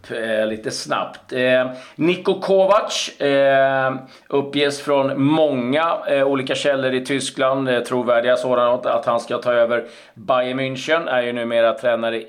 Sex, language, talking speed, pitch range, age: male, Swedish, 135 wpm, 115-140 Hz, 40-59